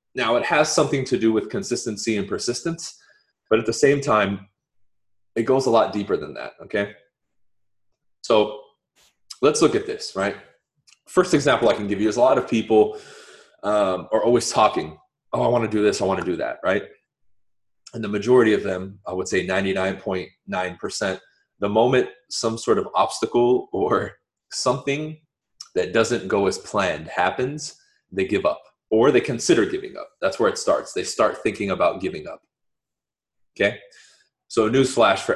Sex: male